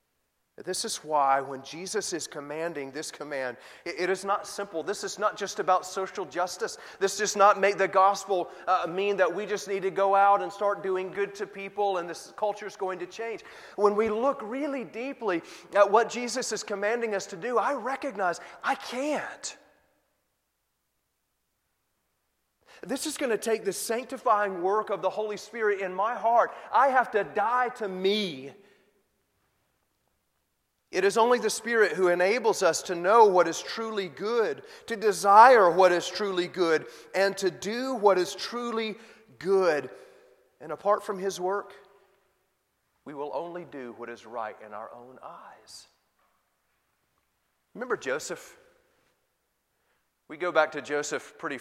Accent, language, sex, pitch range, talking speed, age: American, English, male, 175-220 Hz, 160 wpm, 30-49